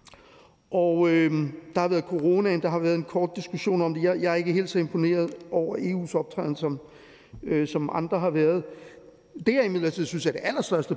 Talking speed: 200 wpm